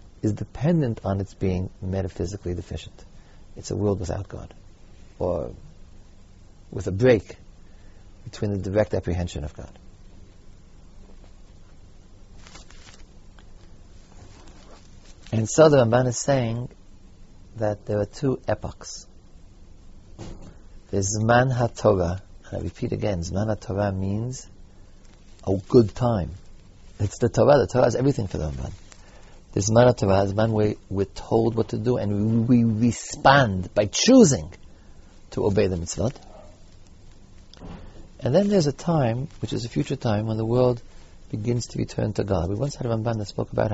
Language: English